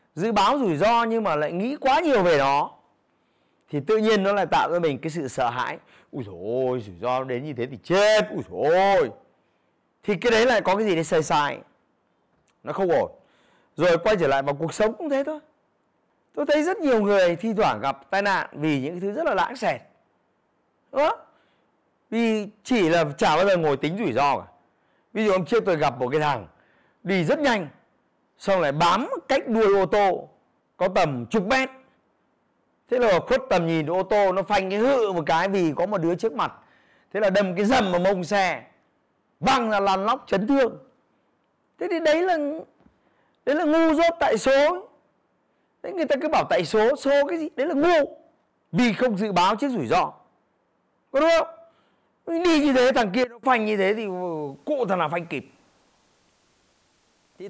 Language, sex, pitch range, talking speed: Vietnamese, male, 170-265 Hz, 200 wpm